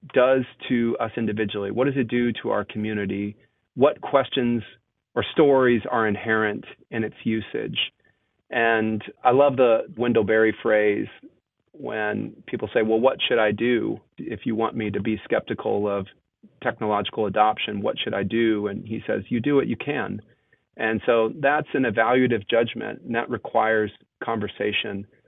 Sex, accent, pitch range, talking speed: male, American, 105-125 Hz, 160 wpm